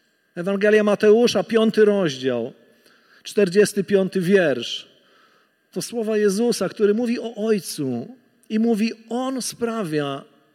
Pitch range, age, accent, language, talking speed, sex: 155-240 Hz, 50-69, native, Polish, 100 wpm, male